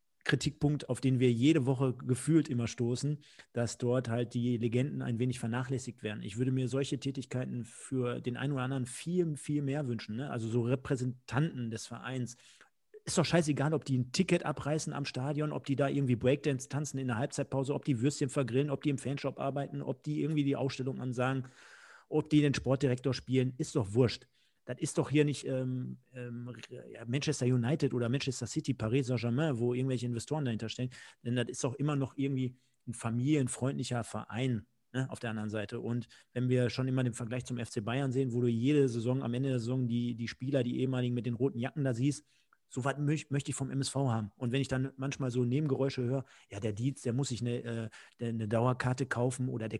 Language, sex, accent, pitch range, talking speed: German, male, German, 120-140 Hz, 205 wpm